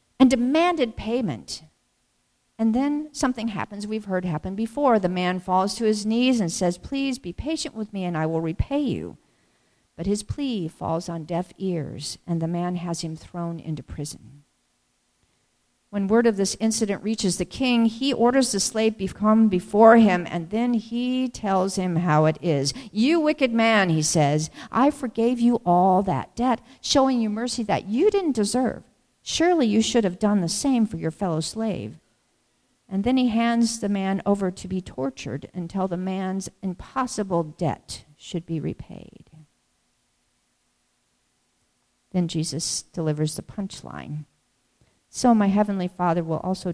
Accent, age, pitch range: American, 50-69, 160-225 Hz